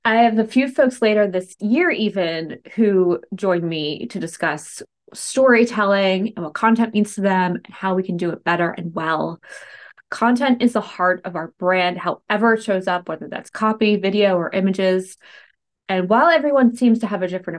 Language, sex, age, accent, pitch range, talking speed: English, female, 20-39, American, 185-230 Hz, 190 wpm